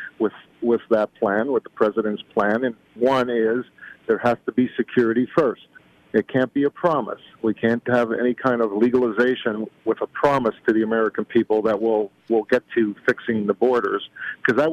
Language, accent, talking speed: English, American, 185 wpm